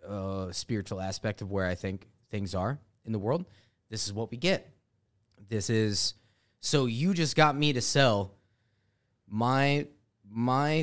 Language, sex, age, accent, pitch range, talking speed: English, male, 30-49, American, 105-135 Hz, 155 wpm